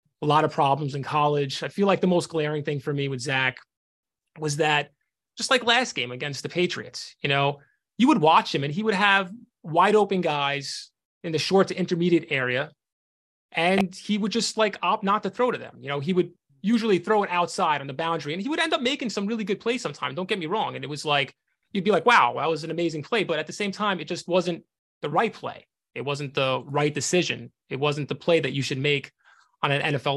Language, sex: English, male